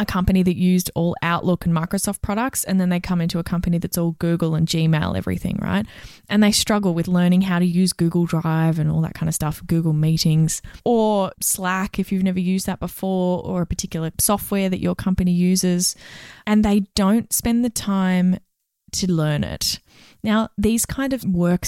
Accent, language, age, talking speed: Australian, English, 20-39, 195 wpm